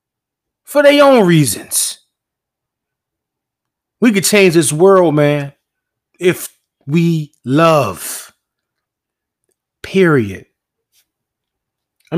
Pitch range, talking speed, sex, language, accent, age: 155-225 Hz, 75 wpm, male, English, American, 30-49